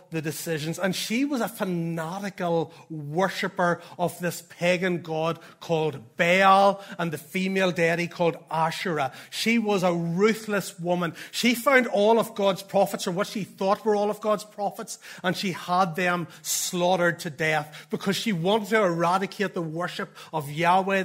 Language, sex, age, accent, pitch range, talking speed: English, male, 30-49, Irish, 165-210 Hz, 160 wpm